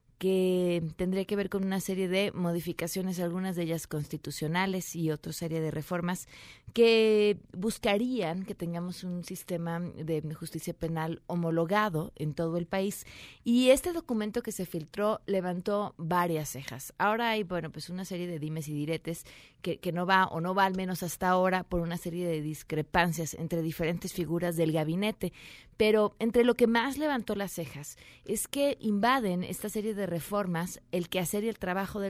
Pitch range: 170-210 Hz